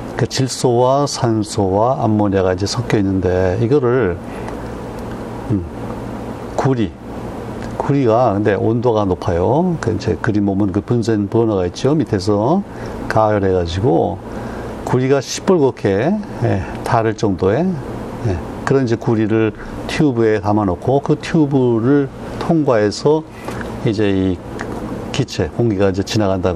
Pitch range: 105-130 Hz